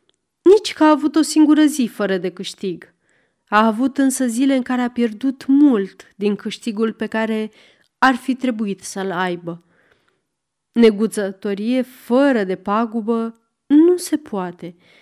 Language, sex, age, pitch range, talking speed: Romanian, female, 30-49, 205-275 Hz, 140 wpm